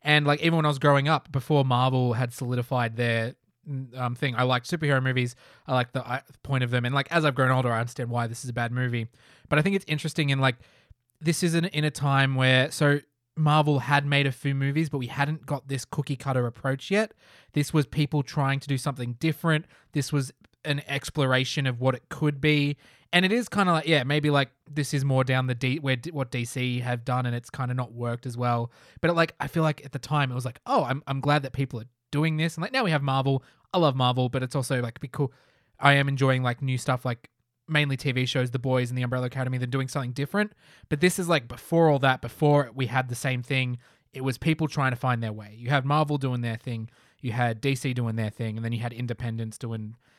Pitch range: 125-150 Hz